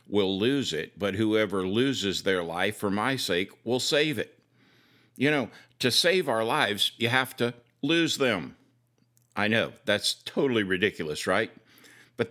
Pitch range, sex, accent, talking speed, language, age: 110-135 Hz, male, American, 155 wpm, English, 60-79